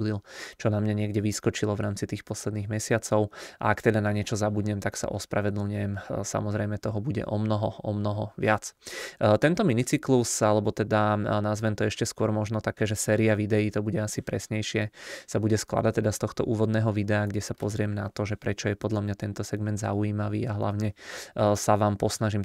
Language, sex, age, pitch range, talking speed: Czech, male, 20-39, 105-110 Hz, 185 wpm